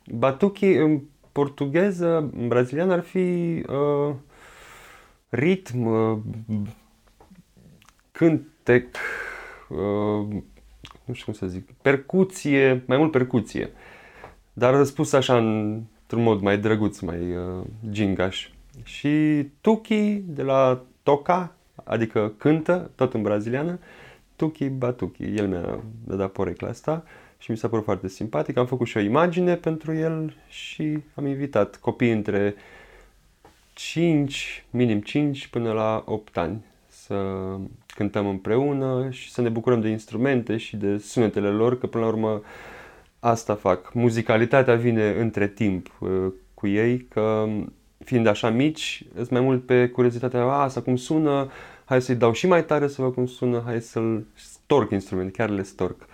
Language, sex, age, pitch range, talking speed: Romanian, male, 30-49, 110-140 Hz, 135 wpm